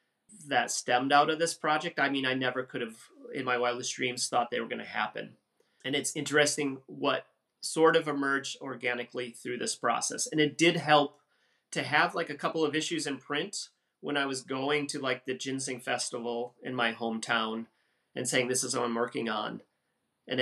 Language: English